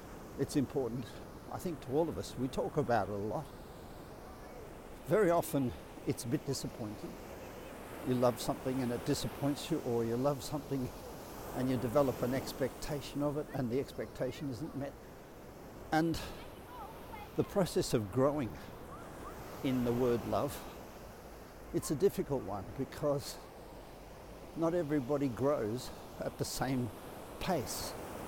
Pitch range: 120-145 Hz